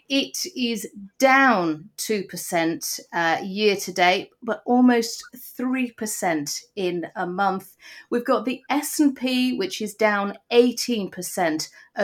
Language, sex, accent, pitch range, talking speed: English, female, British, 180-240 Hz, 95 wpm